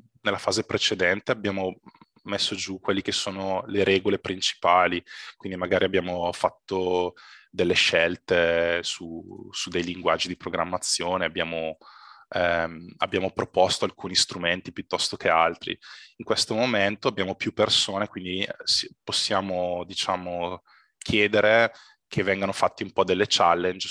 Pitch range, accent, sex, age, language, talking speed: 85-100 Hz, native, male, 20-39, Italian, 125 wpm